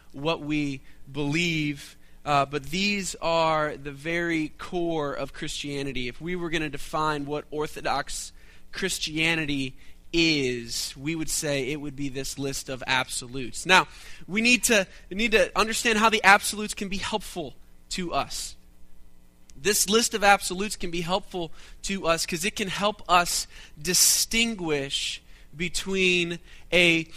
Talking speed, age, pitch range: 140 wpm, 20-39, 140-190 Hz